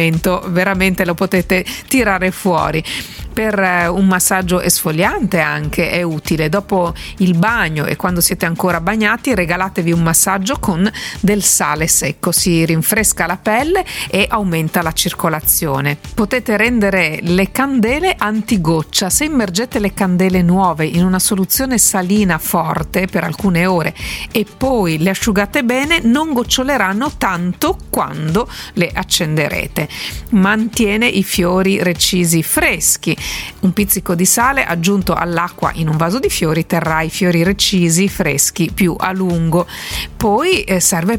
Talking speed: 130 wpm